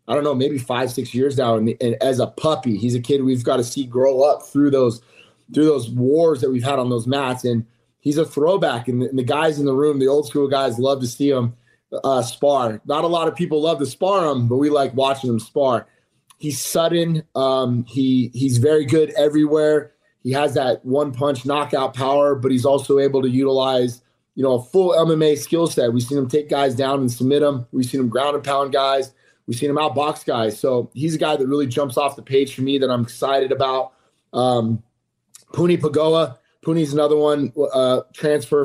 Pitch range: 125-145 Hz